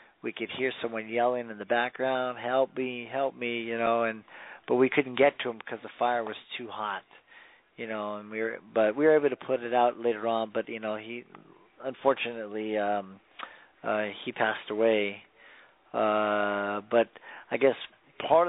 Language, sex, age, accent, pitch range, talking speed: English, male, 40-59, American, 110-125 Hz, 185 wpm